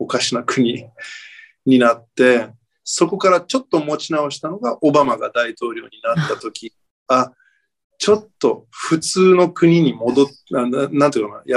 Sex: male